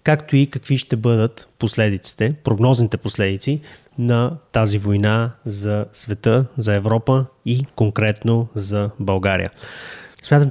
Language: Bulgarian